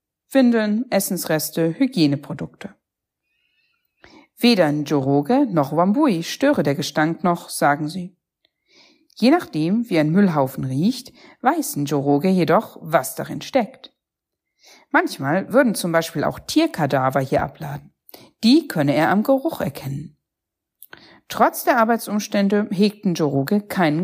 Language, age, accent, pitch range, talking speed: German, 50-69, German, 155-255 Hz, 110 wpm